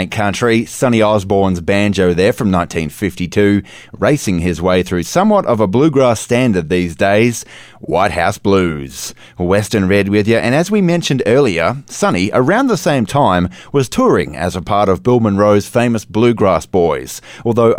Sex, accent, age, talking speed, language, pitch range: male, Australian, 30-49, 160 wpm, English, 90-120 Hz